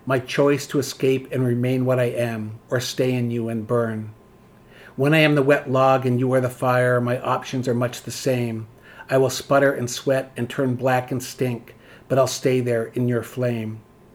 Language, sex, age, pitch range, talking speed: English, male, 60-79, 125-140 Hz, 210 wpm